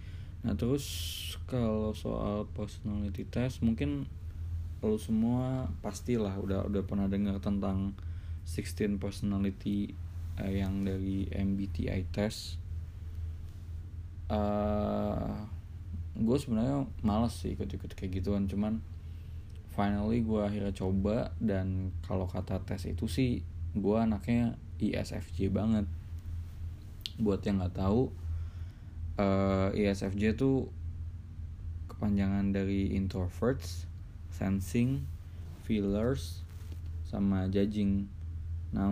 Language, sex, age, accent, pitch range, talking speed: Indonesian, male, 20-39, native, 85-105 Hz, 90 wpm